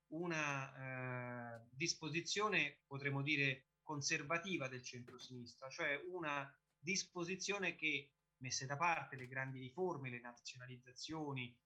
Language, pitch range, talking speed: Italian, 125-165 Hz, 105 wpm